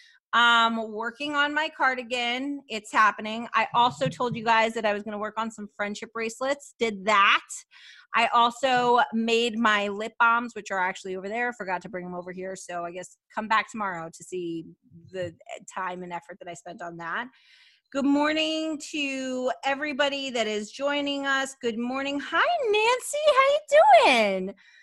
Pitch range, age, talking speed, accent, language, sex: 210-280 Hz, 30-49, 180 wpm, American, English, female